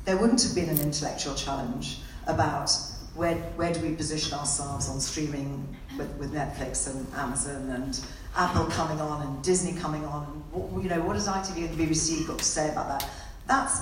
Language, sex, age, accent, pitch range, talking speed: English, female, 40-59, British, 155-220 Hz, 190 wpm